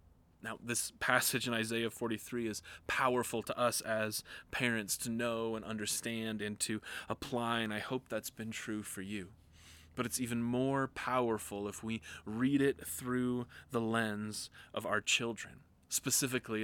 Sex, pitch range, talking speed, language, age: male, 105-120 Hz, 155 wpm, English, 20-39